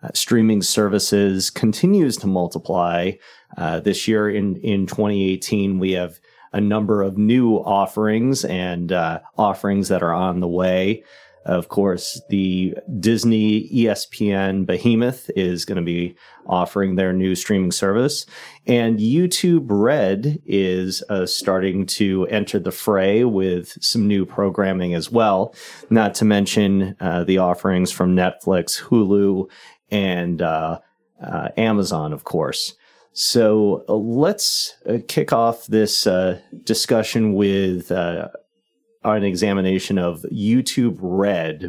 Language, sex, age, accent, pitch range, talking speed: English, male, 30-49, American, 90-110 Hz, 130 wpm